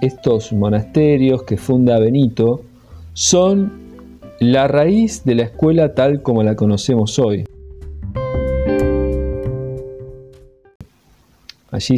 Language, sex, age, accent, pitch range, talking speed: Spanish, male, 40-59, Argentinian, 105-130 Hz, 85 wpm